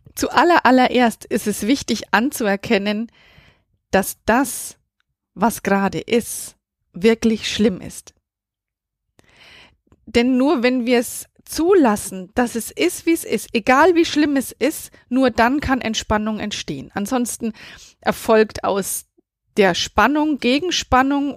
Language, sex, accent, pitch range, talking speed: German, female, German, 210-255 Hz, 120 wpm